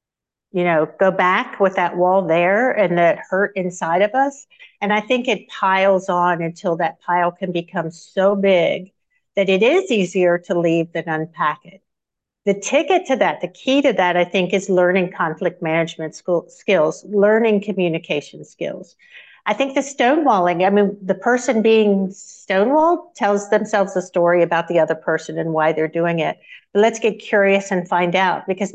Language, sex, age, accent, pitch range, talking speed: English, female, 50-69, American, 175-215 Hz, 175 wpm